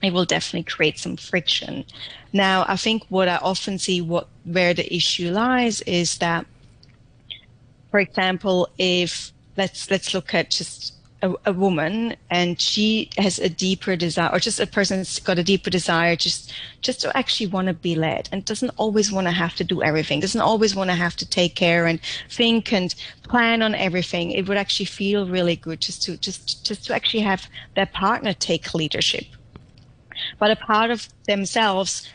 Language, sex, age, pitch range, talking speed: English, female, 30-49, 170-205 Hz, 185 wpm